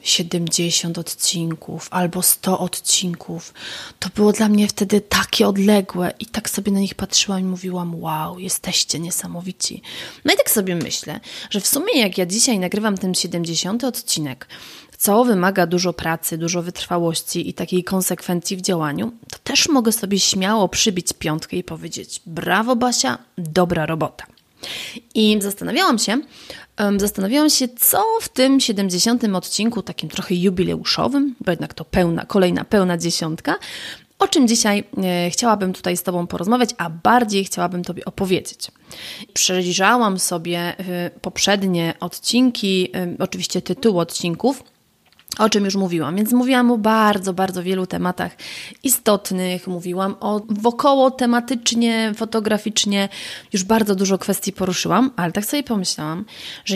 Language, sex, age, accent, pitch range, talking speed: Polish, female, 30-49, native, 180-220 Hz, 135 wpm